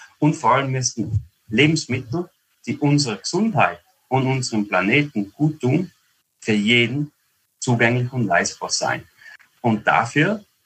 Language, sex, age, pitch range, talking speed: German, male, 30-49, 110-140 Hz, 120 wpm